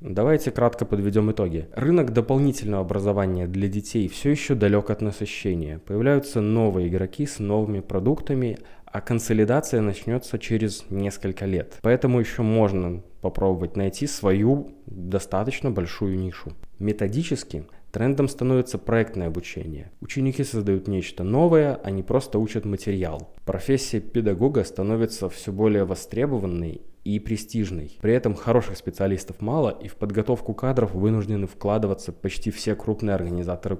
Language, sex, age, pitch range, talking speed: Russian, male, 20-39, 95-115 Hz, 125 wpm